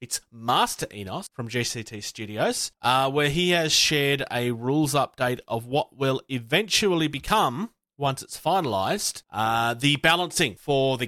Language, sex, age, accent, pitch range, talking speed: English, male, 30-49, Australian, 120-160 Hz, 140 wpm